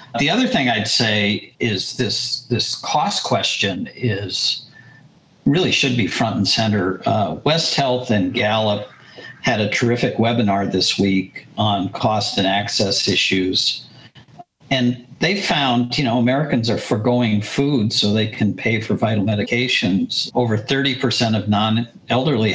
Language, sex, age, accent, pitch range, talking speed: English, male, 50-69, American, 105-125 Hz, 140 wpm